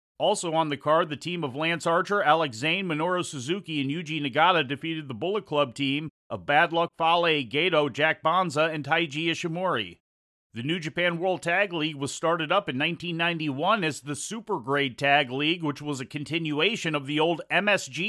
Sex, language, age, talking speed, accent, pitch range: male, English, 40-59, 185 wpm, American, 145-180 Hz